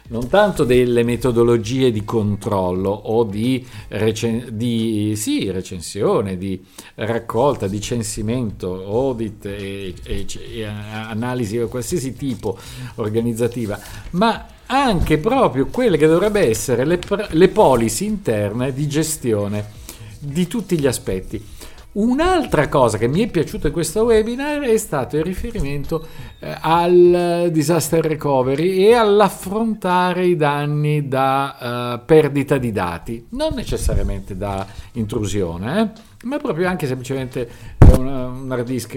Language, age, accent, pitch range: Italian, 50-69, native, 110-165 Hz